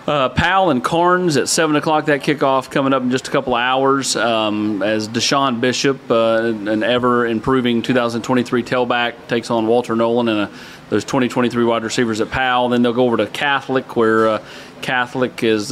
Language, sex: English, male